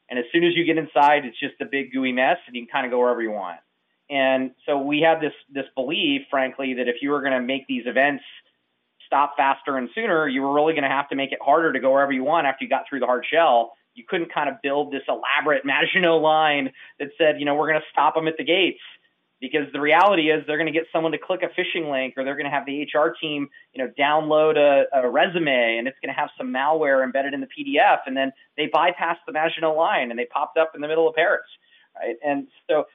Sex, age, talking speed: male, 30-49, 260 wpm